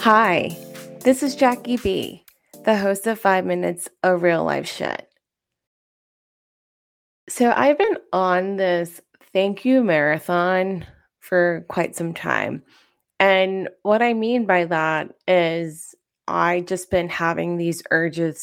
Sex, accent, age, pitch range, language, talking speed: female, American, 20-39, 165-220 Hz, English, 125 wpm